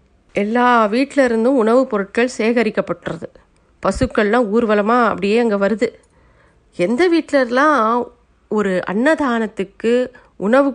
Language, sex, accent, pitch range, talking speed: Tamil, female, native, 210-250 Hz, 85 wpm